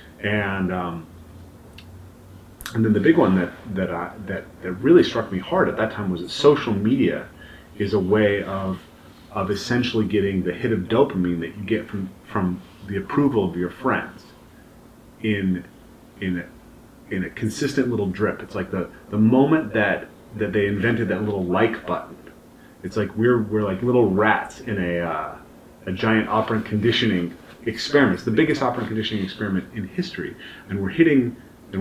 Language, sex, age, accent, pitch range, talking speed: English, male, 30-49, American, 90-110 Hz, 170 wpm